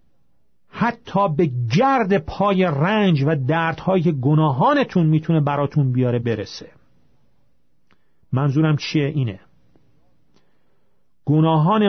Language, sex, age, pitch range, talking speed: Persian, male, 40-59, 135-190 Hz, 85 wpm